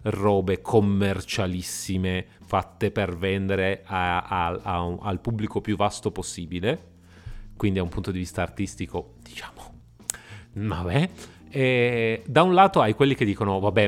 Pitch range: 95-115 Hz